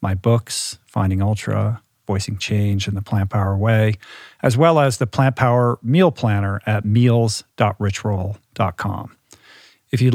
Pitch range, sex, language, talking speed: 105-125 Hz, male, English, 135 wpm